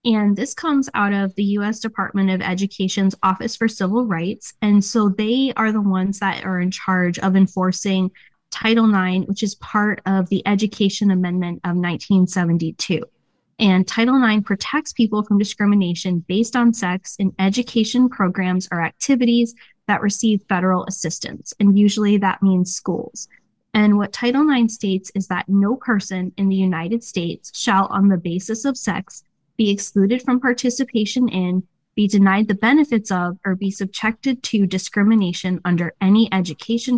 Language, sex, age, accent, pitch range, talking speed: English, female, 10-29, American, 185-220 Hz, 160 wpm